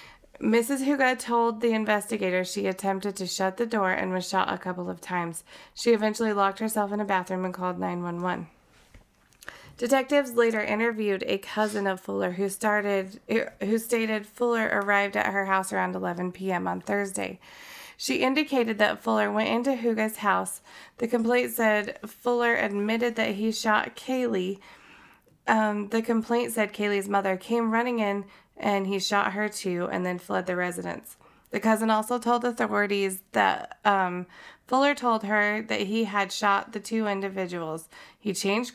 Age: 30-49